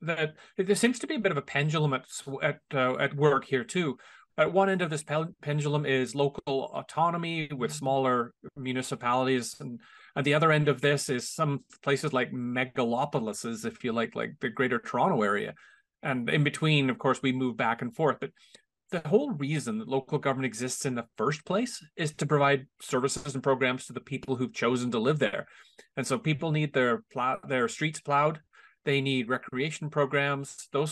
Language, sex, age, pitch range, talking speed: English, male, 30-49, 130-160 Hz, 190 wpm